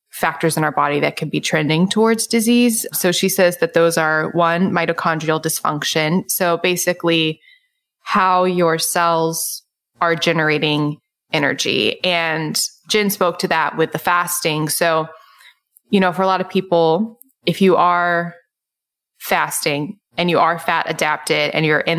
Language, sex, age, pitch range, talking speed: English, female, 20-39, 160-185 Hz, 150 wpm